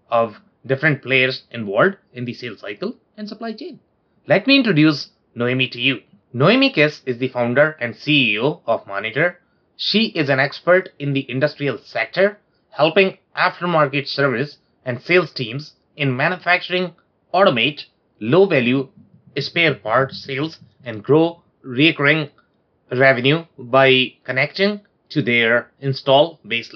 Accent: Indian